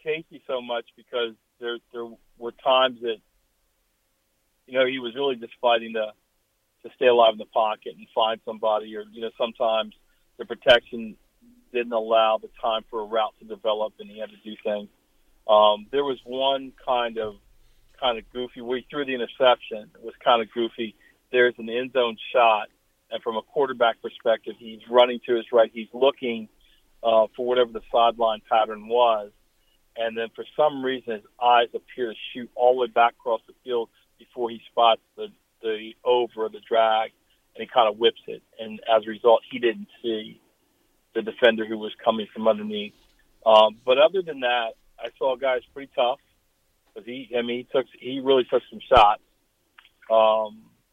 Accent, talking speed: American, 185 wpm